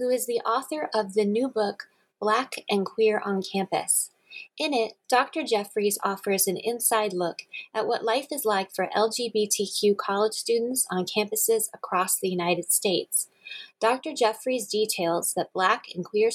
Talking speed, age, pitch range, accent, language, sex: 160 wpm, 30-49, 190-225 Hz, American, English, female